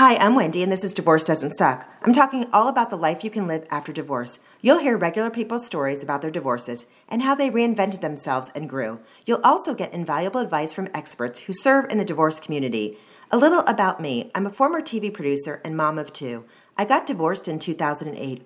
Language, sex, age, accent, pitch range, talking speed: English, female, 40-59, American, 155-220 Hz, 215 wpm